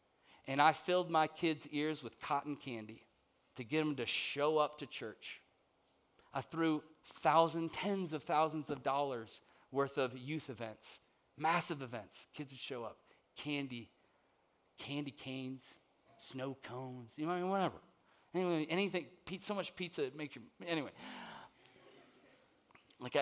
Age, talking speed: 40-59, 145 wpm